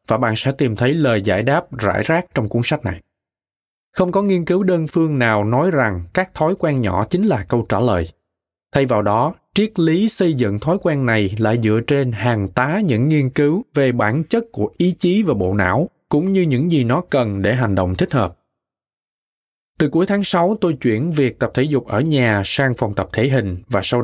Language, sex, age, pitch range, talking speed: Vietnamese, male, 20-39, 110-150 Hz, 220 wpm